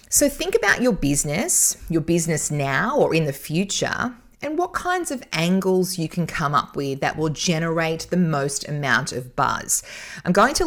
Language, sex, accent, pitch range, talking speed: English, female, Australian, 140-180 Hz, 185 wpm